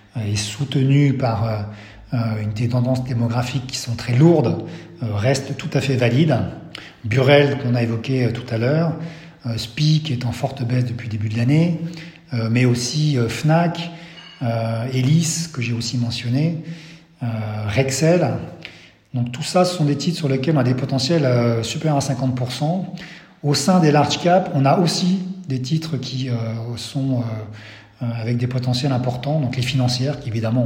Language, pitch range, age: French, 120-145 Hz, 40-59